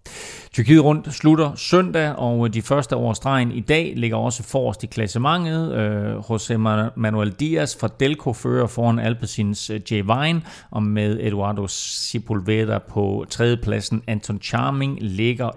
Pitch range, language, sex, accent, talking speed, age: 110-155 Hz, Danish, male, native, 135 wpm, 40-59